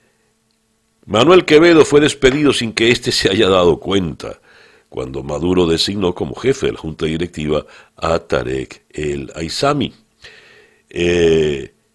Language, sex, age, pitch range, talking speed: Spanish, male, 60-79, 85-125 Hz, 125 wpm